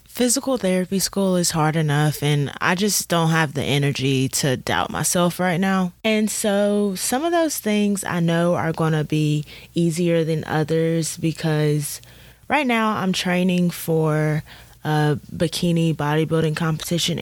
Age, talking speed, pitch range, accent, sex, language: 20-39, 150 wpm, 160-200 Hz, American, female, English